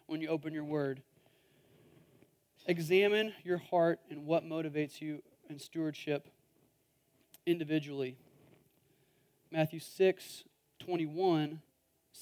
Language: English